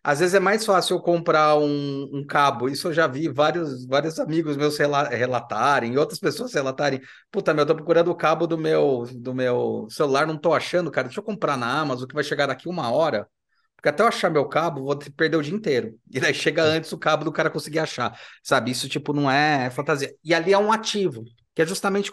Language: Portuguese